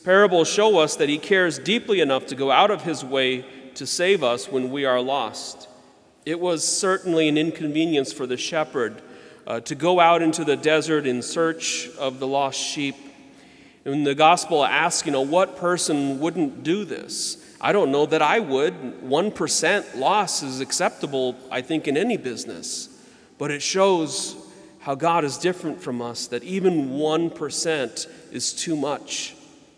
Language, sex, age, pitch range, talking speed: English, male, 40-59, 135-170 Hz, 170 wpm